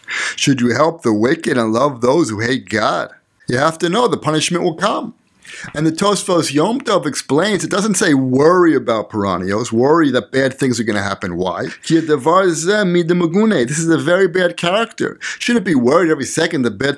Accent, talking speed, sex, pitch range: American, 185 wpm, male, 140-180 Hz